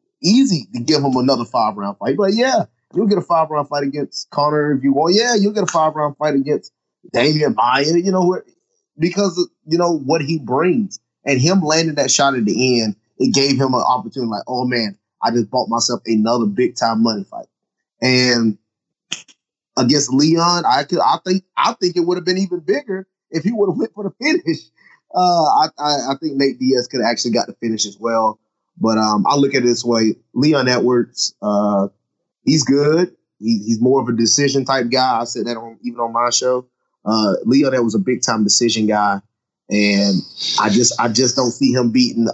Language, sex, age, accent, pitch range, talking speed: English, male, 30-49, American, 115-160 Hz, 210 wpm